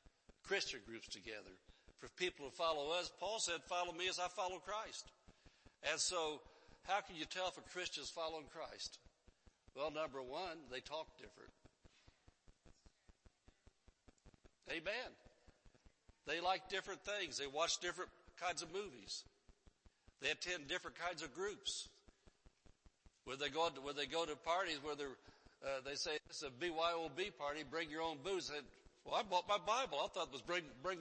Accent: American